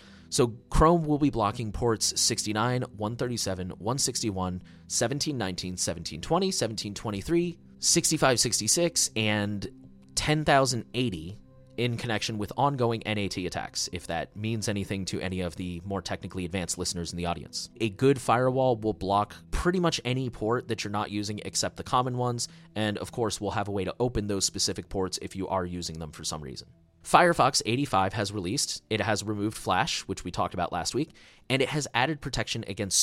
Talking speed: 170 wpm